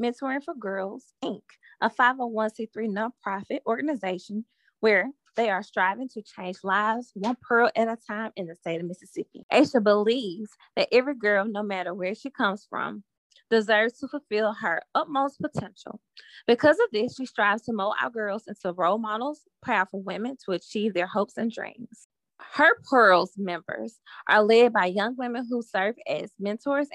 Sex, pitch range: female, 195-245 Hz